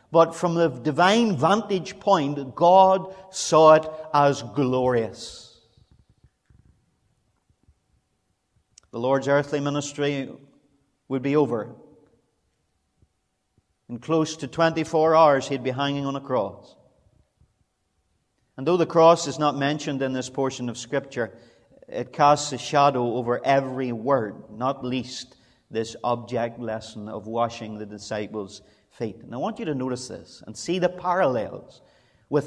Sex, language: male, English